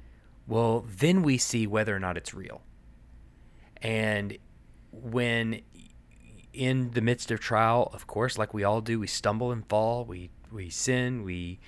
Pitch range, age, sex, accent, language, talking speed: 100-125 Hz, 30-49, male, American, English, 155 wpm